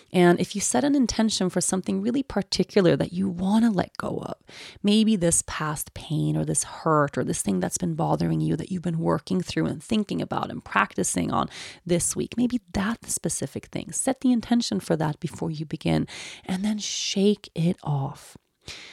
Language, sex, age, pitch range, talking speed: English, female, 30-49, 160-215 Hz, 195 wpm